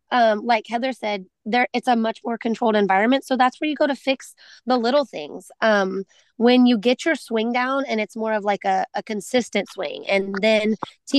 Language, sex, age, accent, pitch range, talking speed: English, female, 20-39, American, 200-235 Hz, 215 wpm